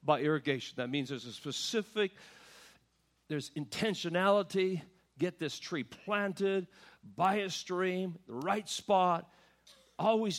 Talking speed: 115 wpm